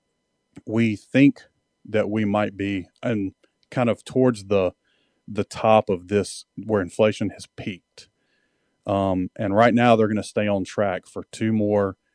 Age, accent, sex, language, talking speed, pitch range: 30-49, American, male, English, 155 wpm, 95-110 Hz